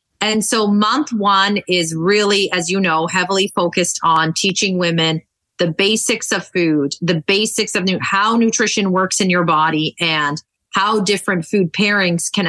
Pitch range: 170-210 Hz